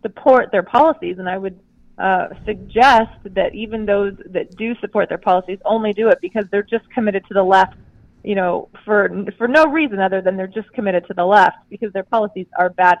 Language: English